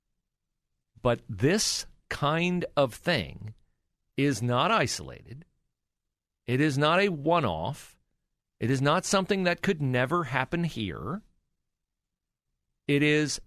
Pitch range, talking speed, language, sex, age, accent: 110-170 Hz, 105 wpm, English, male, 50-69, American